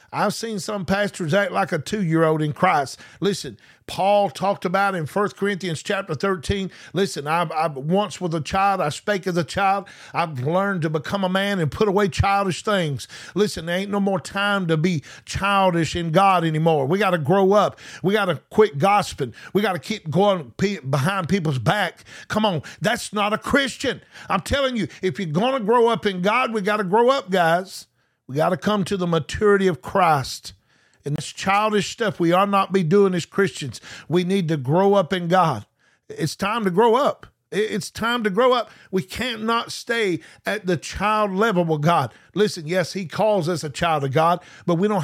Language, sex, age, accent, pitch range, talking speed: English, male, 50-69, American, 170-205 Hz, 205 wpm